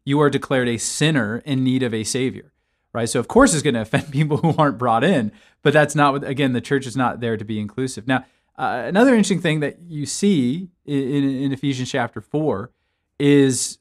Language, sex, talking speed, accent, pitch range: English, male, 215 wpm, American, 110-140 Hz